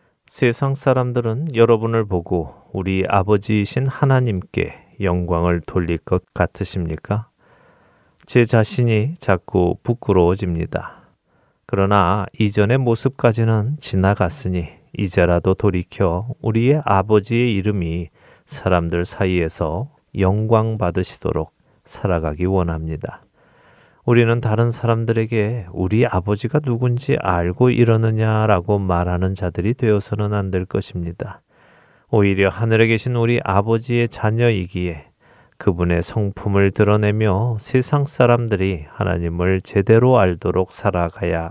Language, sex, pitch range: Korean, male, 90-120 Hz